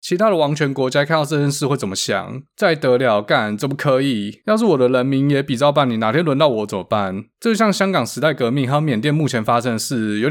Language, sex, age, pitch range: Chinese, male, 20-39, 110-140 Hz